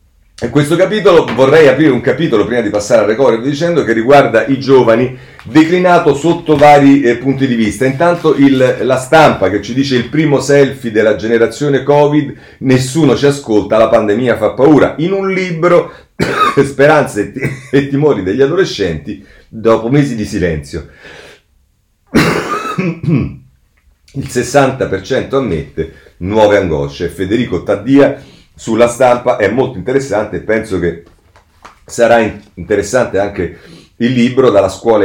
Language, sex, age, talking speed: Italian, male, 40-59, 135 wpm